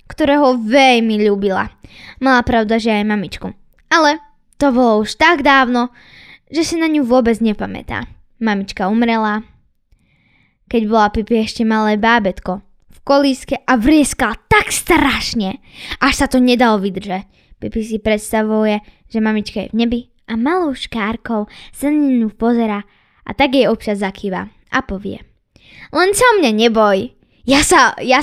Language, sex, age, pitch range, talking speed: Slovak, female, 10-29, 215-270 Hz, 145 wpm